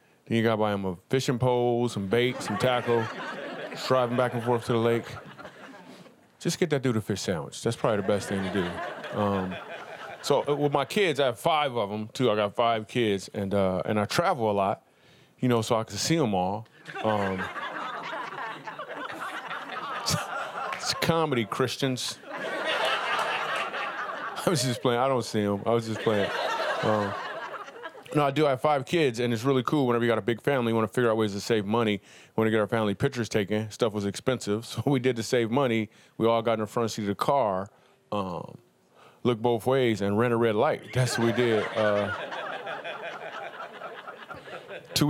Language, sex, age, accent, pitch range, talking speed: English, male, 30-49, American, 110-130 Hz, 195 wpm